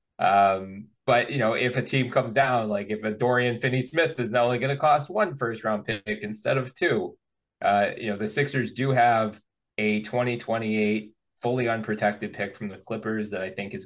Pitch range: 105-125 Hz